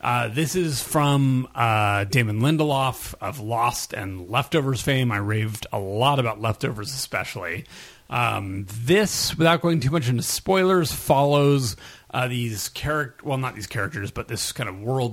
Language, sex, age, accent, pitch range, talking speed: English, male, 30-49, American, 110-140 Hz, 160 wpm